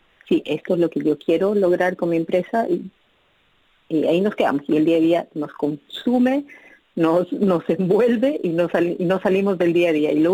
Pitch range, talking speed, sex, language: 160-195 Hz, 210 wpm, female, Spanish